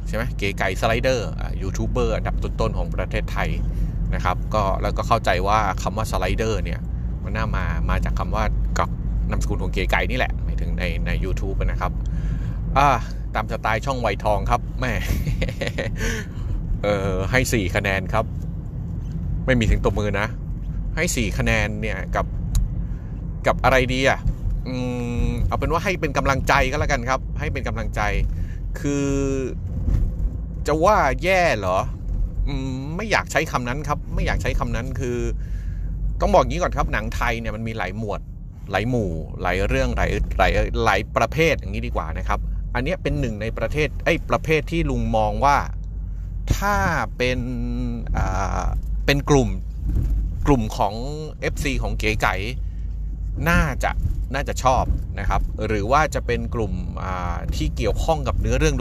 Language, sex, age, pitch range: Thai, male, 20-39, 90-125 Hz